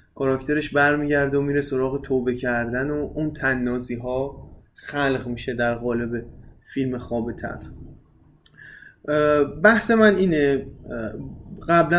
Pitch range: 125-175 Hz